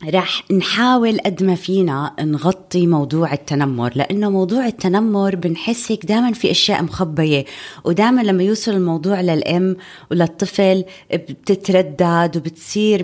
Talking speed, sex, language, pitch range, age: 115 wpm, female, Arabic, 145-190 Hz, 20-39